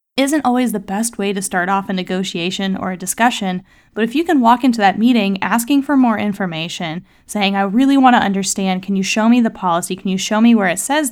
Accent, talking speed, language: American, 235 wpm, English